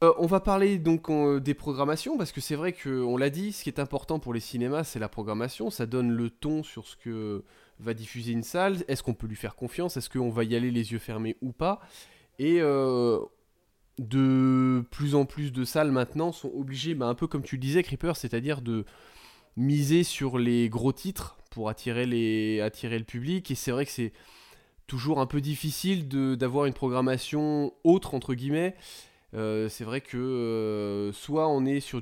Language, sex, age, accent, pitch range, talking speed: French, male, 20-39, French, 115-145 Hz, 210 wpm